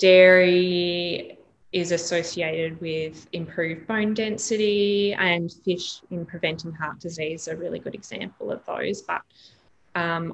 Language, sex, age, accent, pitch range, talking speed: English, female, 20-39, Australian, 170-205 Hz, 120 wpm